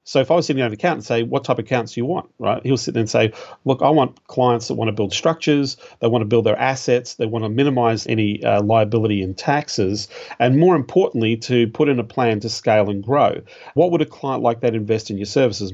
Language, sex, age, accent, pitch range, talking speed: English, male, 40-59, Australian, 110-135 Hz, 265 wpm